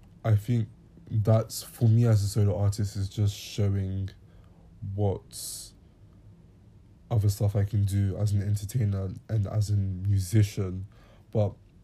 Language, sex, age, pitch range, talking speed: English, male, 20-39, 95-110 Hz, 130 wpm